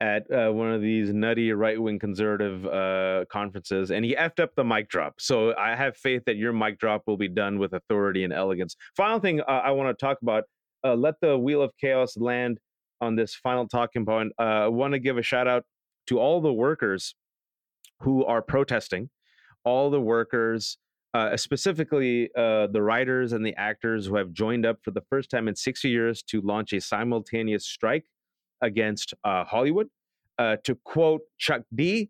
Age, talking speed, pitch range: 30-49, 190 wpm, 110-140 Hz